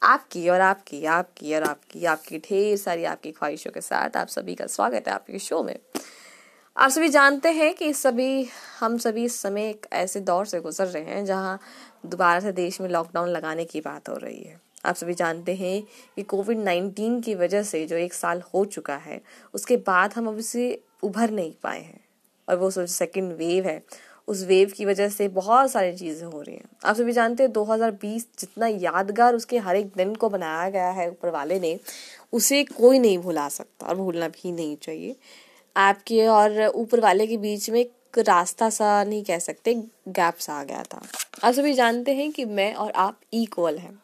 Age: 20-39